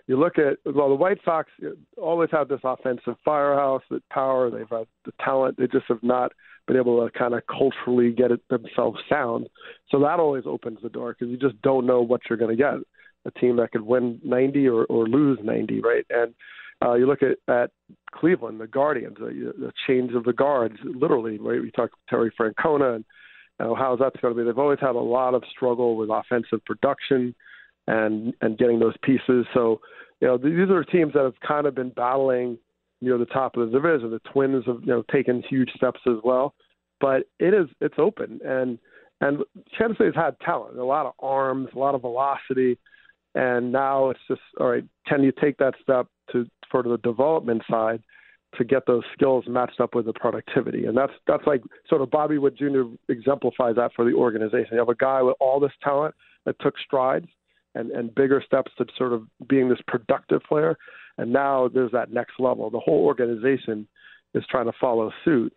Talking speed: 205 wpm